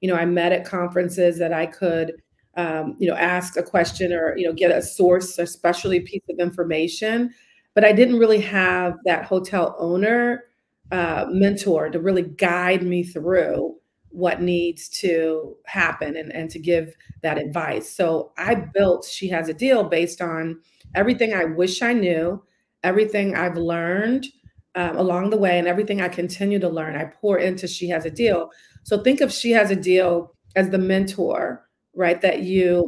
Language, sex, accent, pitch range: English, female, American, 170-200 Hz